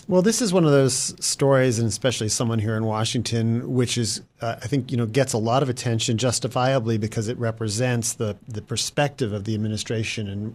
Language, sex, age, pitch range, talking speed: English, male, 40-59, 110-130 Hz, 205 wpm